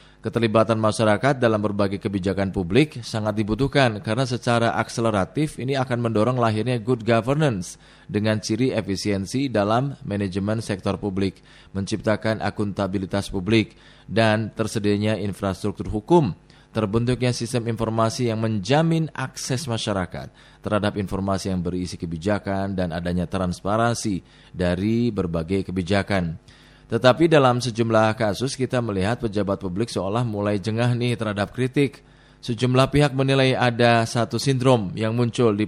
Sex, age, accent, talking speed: male, 20-39, native, 120 wpm